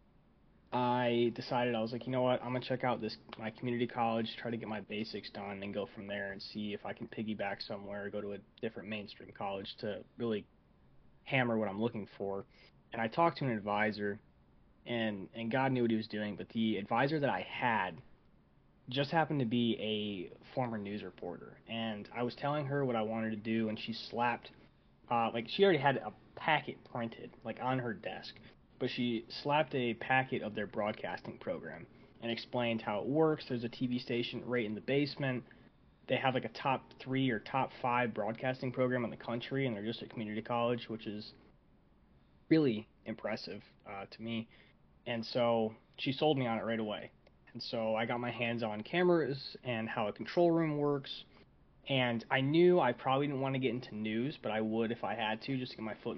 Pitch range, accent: 110-130 Hz, American